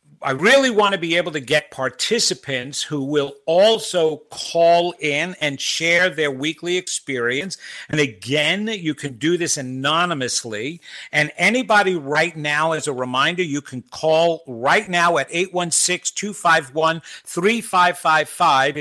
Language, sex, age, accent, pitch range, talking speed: English, male, 50-69, American, 145-195 Hz, 130 wpm